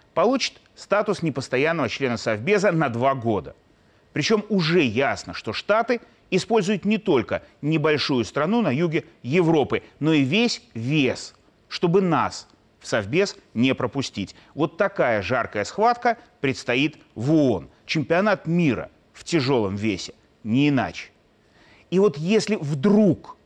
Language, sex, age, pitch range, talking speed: Russian, male, 30-49, 115-190 Hz, 125 wpm